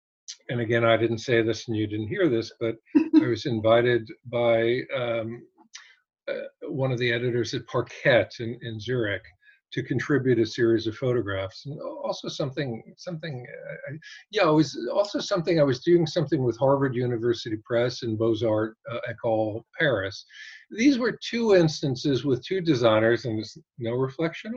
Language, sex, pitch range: English, male, 120-170 Hz